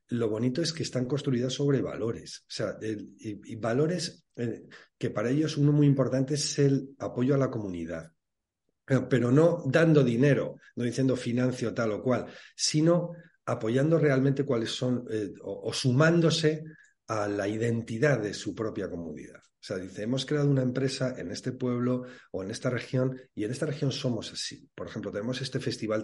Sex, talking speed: male, 180 wpm